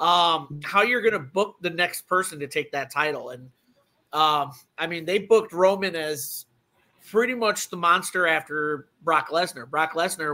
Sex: male